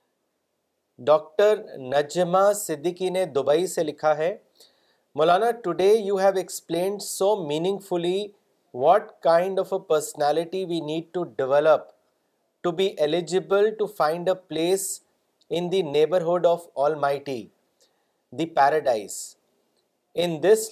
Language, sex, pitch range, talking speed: Urdu, male, 155-190 Hz, 125 wpm